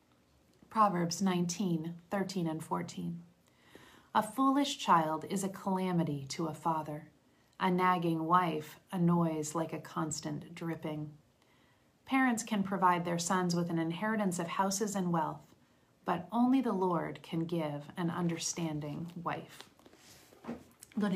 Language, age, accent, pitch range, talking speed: English, 40-59, American, 160-190 Hz, 130 wpm